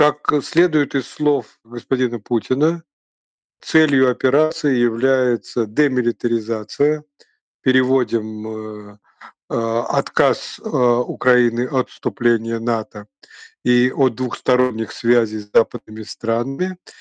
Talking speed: 90 wpm